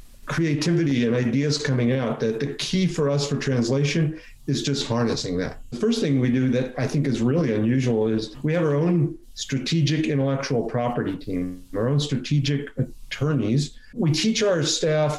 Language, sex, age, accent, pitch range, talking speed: English, male, 50-69, American, 130-155 Hz, 175 wpm